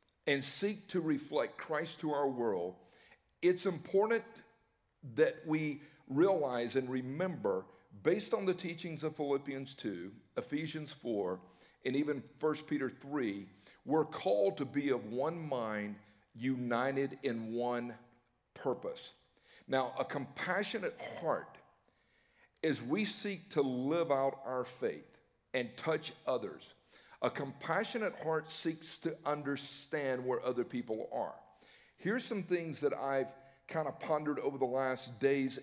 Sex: male